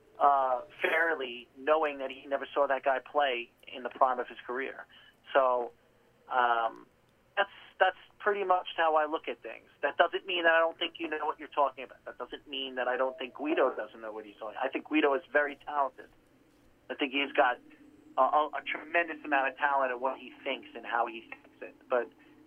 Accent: American